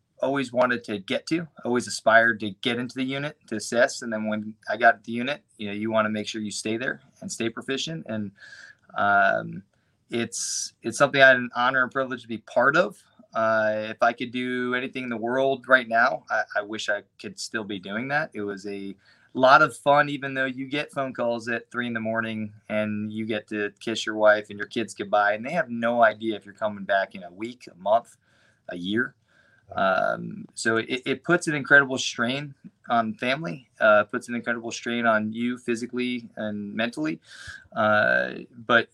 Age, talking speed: 20-39, 210 wpm